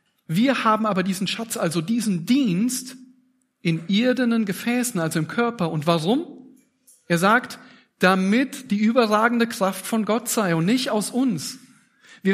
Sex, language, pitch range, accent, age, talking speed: male, German, 145-230 Hz, German, 40-59, 145 wpm